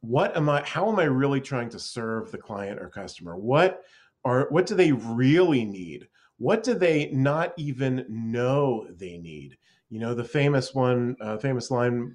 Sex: male